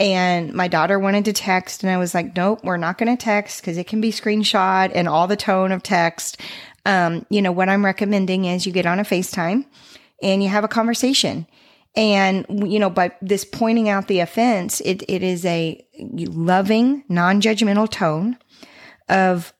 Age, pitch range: 40-59, 175-210 Hz